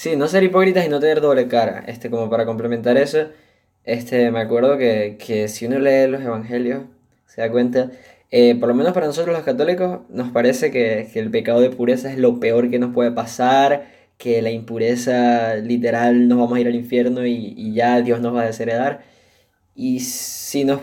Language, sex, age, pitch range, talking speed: Spanish, male, 10-29, 110-130 Hz, 205 wpm